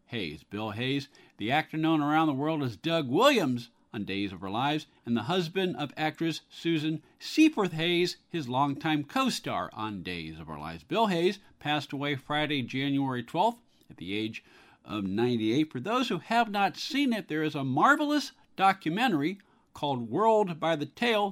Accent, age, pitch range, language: American, 50-69, 125-195 Hz, English